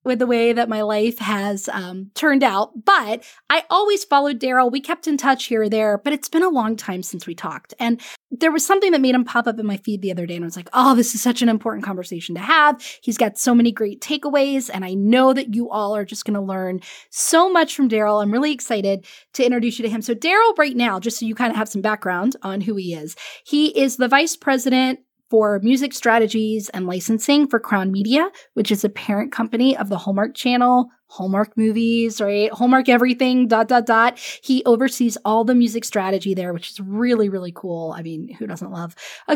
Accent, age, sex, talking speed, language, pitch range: American, 20-39, female, 230 wpm, English, 200-255 Hz